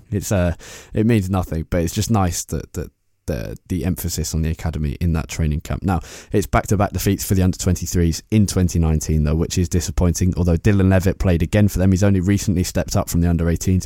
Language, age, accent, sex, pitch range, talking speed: English, 20-39, British, male, 85-100 Hz, 215 wpm